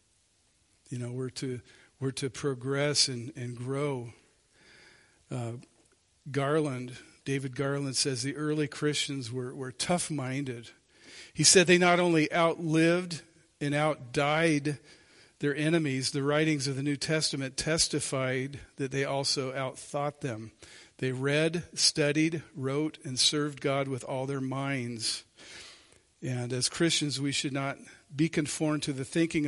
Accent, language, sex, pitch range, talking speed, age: American, English, male, 130-150 Hz, 135 wpm, 50-69